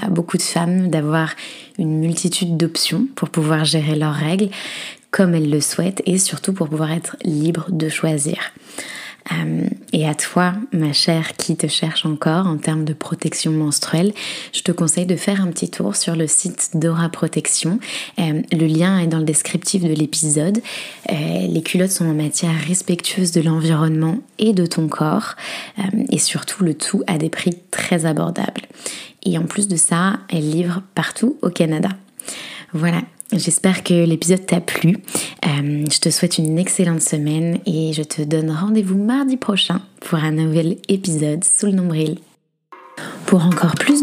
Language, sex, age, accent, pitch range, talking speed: French, female, 20-39, French, 160-190 Hz, 165 wpm